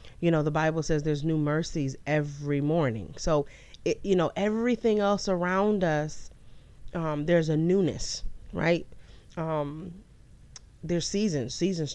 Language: English